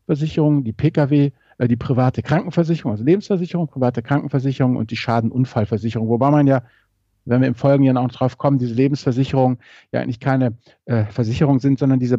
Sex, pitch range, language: male, 115-145 Hz, German